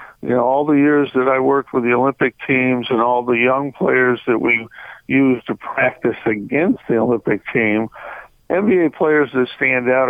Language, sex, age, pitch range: English, male, 60-79, 120-140 Hz